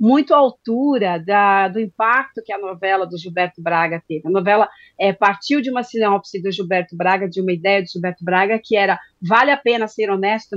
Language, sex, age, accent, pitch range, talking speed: Portuguese, female, 40-59, Brazilian, 185-230 Hz, 195 wpm